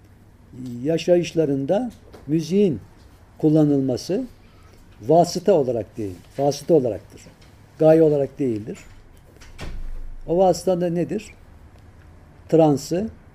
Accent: native